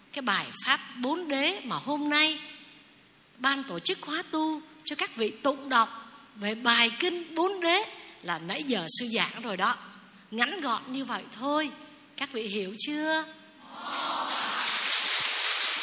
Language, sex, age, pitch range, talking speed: Vietnamese, female, 20-39, 205-300 Hz, 150 wpm